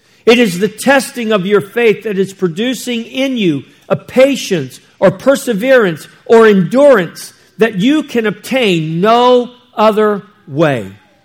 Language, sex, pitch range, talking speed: English, male, 150-205 Hz, 135 wpm